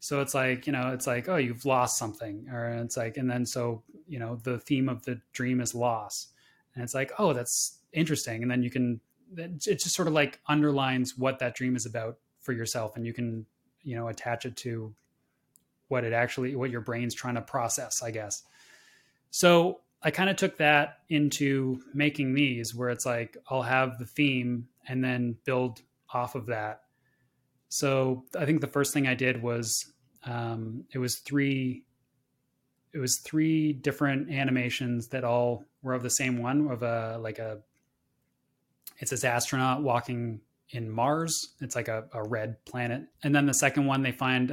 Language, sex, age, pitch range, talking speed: English, male, 20-39, 120-140 Hz, 185 wpm